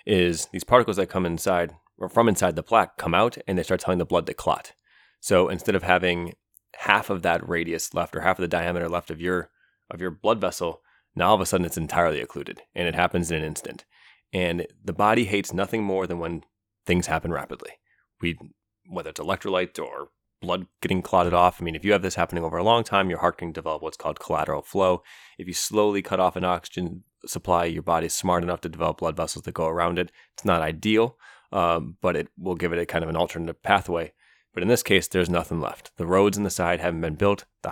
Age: 30-49